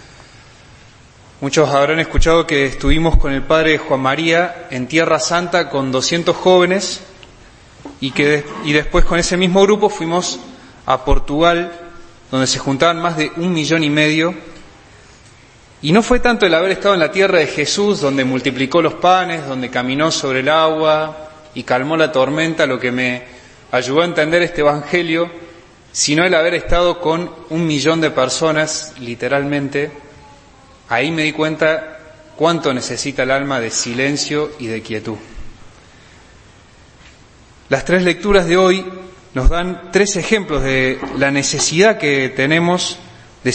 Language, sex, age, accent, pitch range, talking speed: Spanish, male, 20-39, Argentinian, 130-170 Hz, 145 wpm